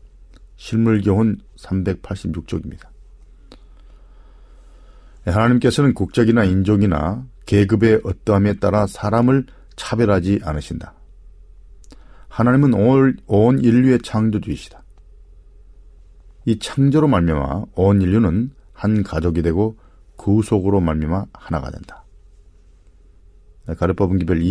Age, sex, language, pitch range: 40-59, male, Korean, 85-110 Hz